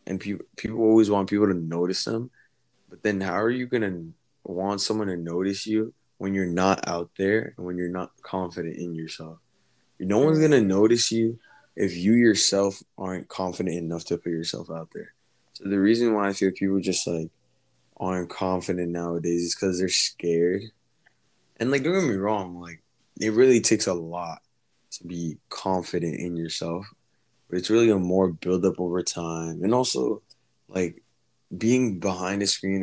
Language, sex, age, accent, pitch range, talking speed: English, male, 20-39, American, 85-100 Hz, 180 wpm